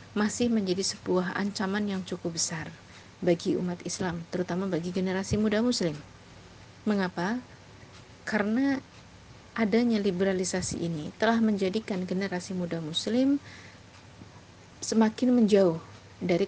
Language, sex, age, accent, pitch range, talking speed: Indonesian, female, 30-49, native, 175-210 Hz, 100 wpm